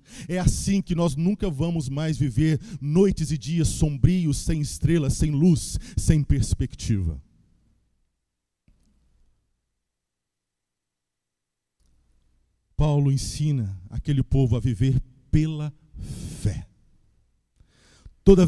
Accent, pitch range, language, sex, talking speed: Brazilian, 110-175 Hz, Portuguese, male, 90 wpm